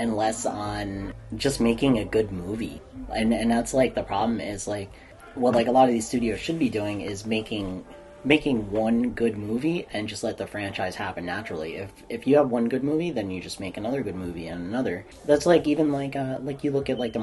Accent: American